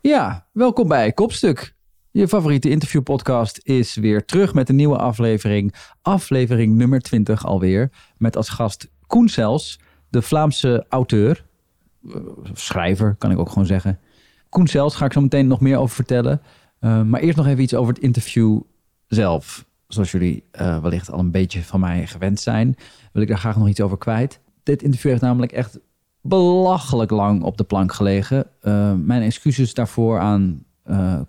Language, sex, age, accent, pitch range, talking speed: Dutch, male, 40-59, Dutch, 105-130 Hz, 170 wpm